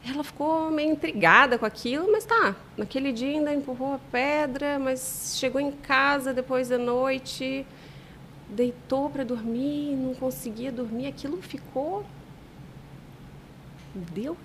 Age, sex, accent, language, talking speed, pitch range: 30-49, female, Brazilian, Portuguese, 125 wpm, 240-310 Hz